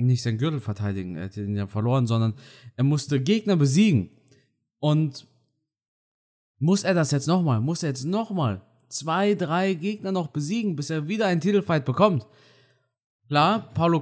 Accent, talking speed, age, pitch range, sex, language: German, 160 wpm, 20-39, 130-175 Hz, male, German